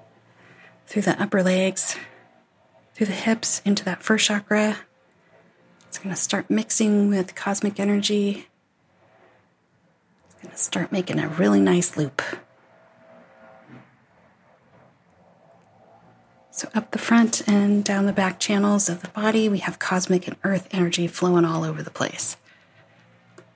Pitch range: 175-210 Hz